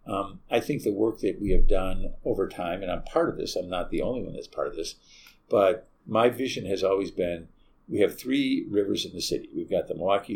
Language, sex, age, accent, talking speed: English, male, 50-69, American, 245 wpm